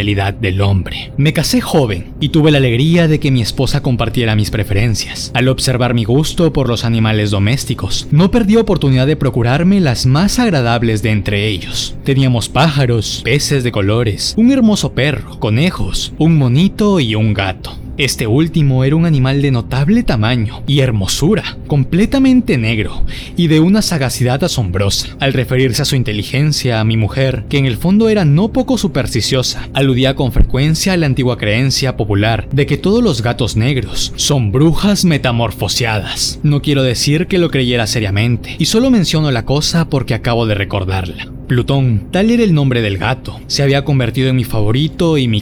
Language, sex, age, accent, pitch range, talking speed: Spanish, male, 20-39, Mexican, 115-150 Hz, 170 wpm